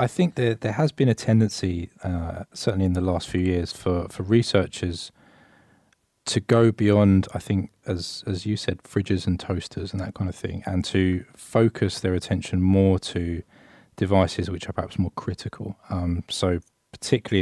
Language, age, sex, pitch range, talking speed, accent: English, 20-39, male, 90-110 Hz, 175 wpm, British